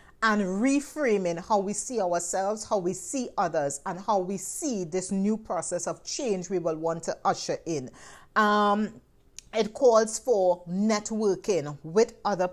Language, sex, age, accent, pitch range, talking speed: English, female, 40-59, Nigerian, 180-220 Hz, 155 wpm